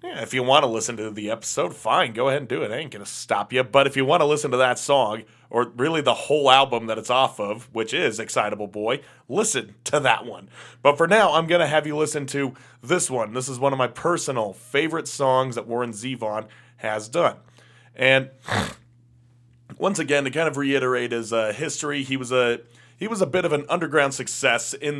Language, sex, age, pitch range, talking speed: English, male, 30-49, 115-140 Hz, 220 wpm